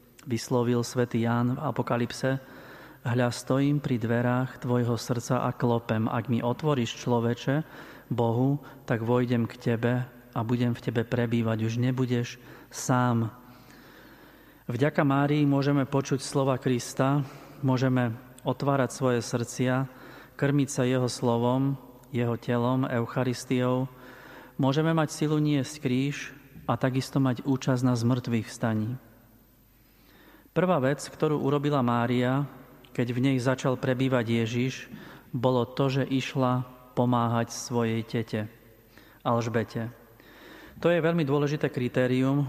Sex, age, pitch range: male, 40-59, 120-135 Hz